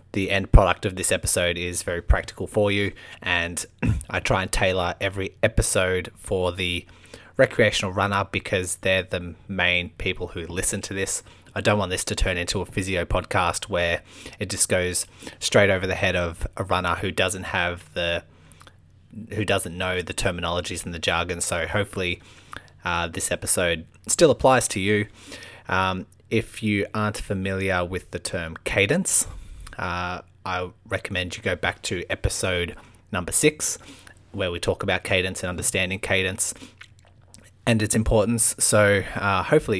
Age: 20-39